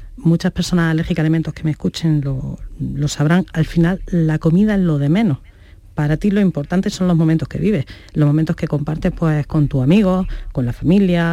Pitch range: 140-175 Hz